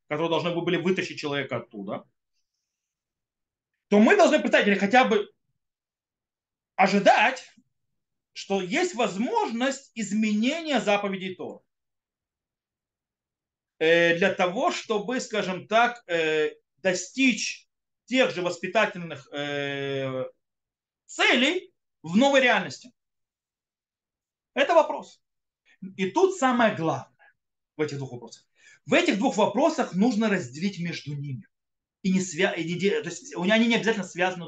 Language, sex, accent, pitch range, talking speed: Russian, male, native, 160-235 Hz, 105 wpm